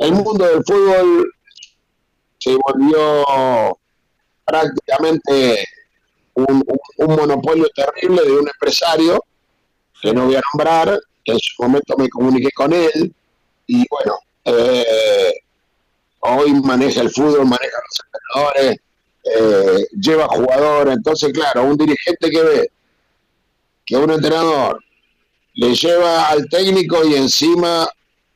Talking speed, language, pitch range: 115 wpm, Spanish, 140-205 Hz